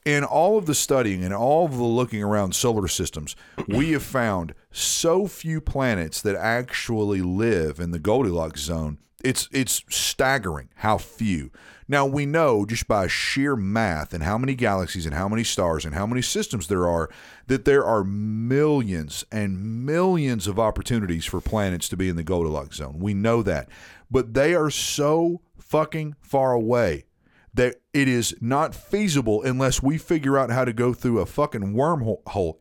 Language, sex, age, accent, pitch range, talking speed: English, male, 40-59, American, 105-145 Hz, 175 wpm